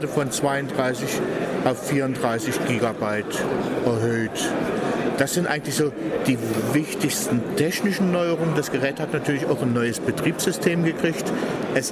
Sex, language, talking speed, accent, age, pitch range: male, German, 120 wpm, German, 50-69, 125-165 Hz